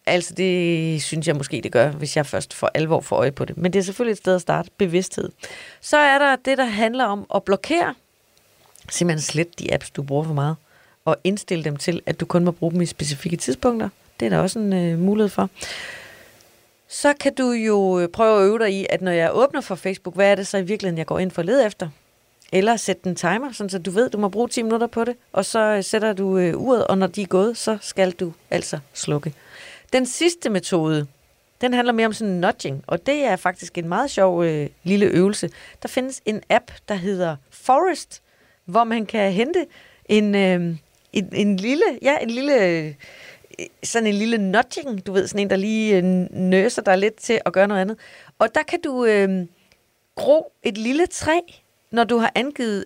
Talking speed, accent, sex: 210 wpm, native, female